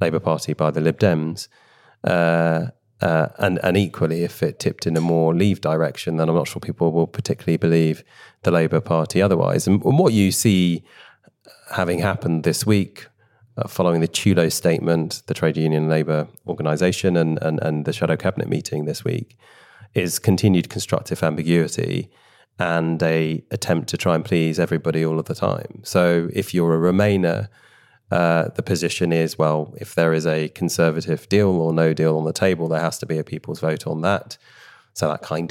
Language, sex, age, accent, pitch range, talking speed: English, male, 30-49, British, 80-90 Hz, 185 wpm